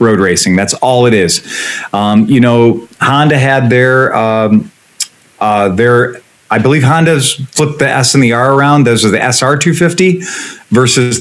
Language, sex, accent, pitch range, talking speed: English, male, American, 115-145 Hz, 165 wpm